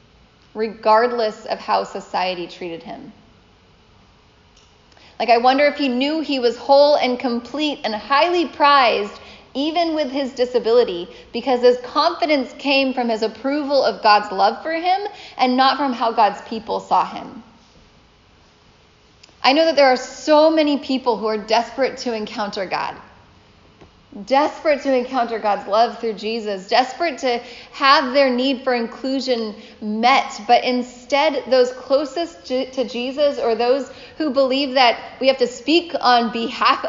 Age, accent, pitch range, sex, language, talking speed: 10-29, American, 225-275 Hz, female, English, 145 wpm